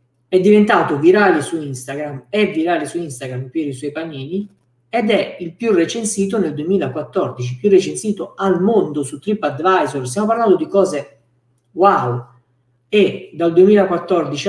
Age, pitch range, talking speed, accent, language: 50-69, 125-190 Hz, 140 wpm, native, Italian